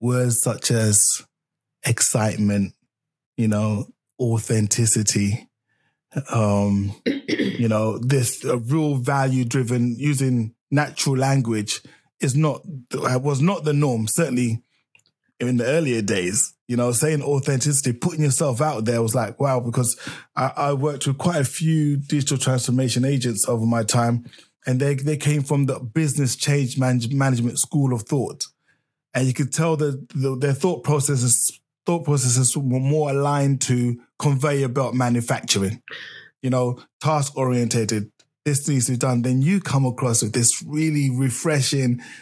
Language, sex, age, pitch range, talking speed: English, male, 20-39, 120-150 Hz, 145 wpm